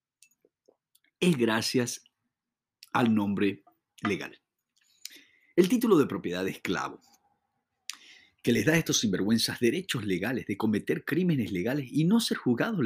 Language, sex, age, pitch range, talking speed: English, male, 50-69, 110-155 Hz, 120 wpm